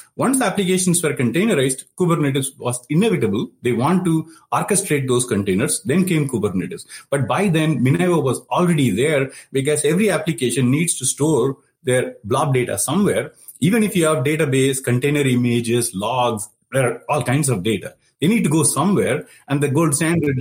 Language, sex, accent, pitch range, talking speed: English, male, Indian, 120-165 Hz, 160 wpm